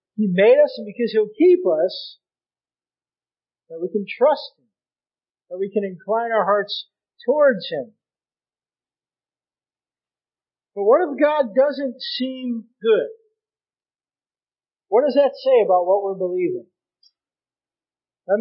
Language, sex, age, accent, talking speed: English, male, 40-59, American, 115 wpm